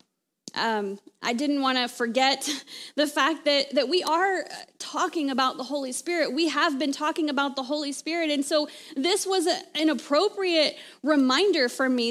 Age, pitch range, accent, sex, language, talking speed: 20-39, 255-315 Hz, American, female, English, 175 wpm